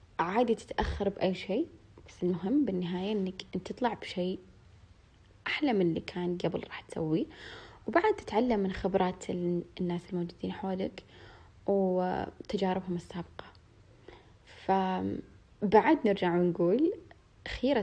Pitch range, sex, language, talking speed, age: 170-210 Hz, female, Arabic, 105 wpm, 20-39